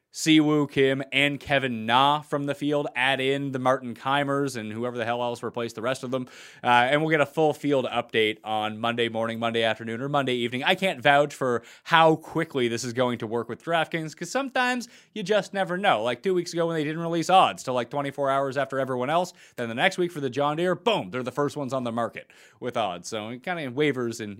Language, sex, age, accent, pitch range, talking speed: English, male, 30-49, American, 115-150 Hz, 240 wpm